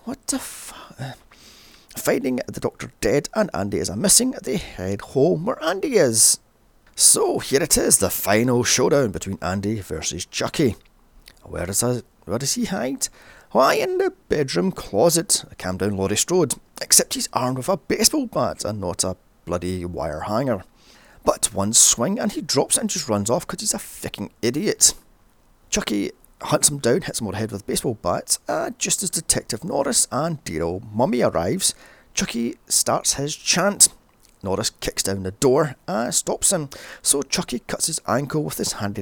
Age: 30-49